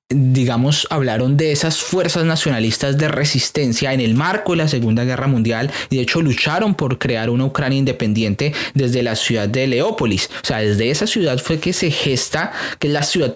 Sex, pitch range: male, 120-155 Hz